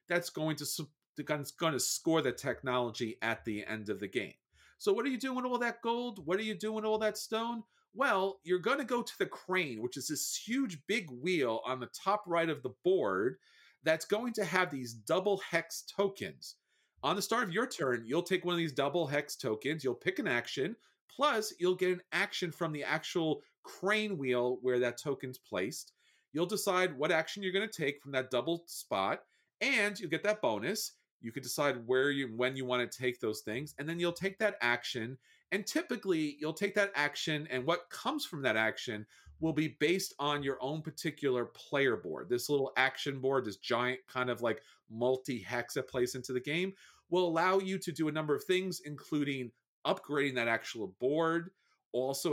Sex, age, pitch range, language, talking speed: male, 40-59, 130-190 Hz, English, 200 wpm